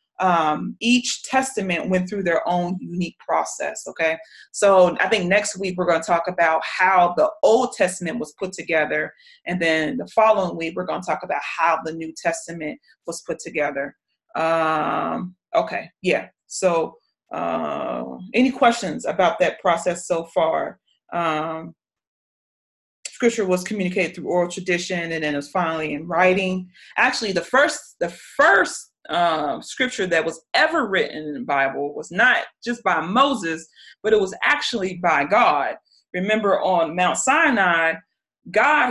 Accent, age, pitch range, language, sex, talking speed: American, 30-49, 165-215 Hz, English, female, 150 wpm